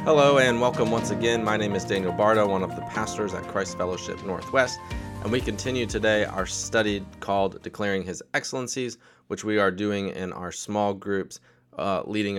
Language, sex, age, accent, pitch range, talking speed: English, male, 20-39, American, 95-120 Hz, 185 wpm